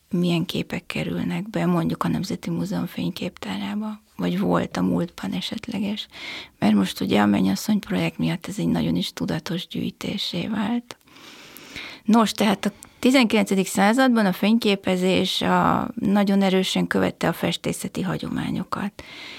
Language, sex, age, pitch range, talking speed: Hungarian, female, 30-49, 175-215 Hz, 125 wpm